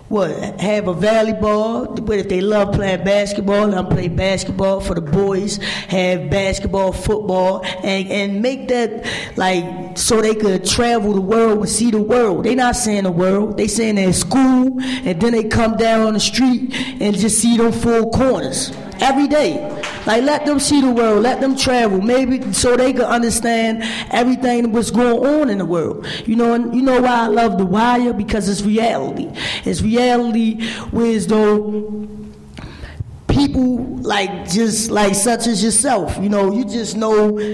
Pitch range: 205-245 Hz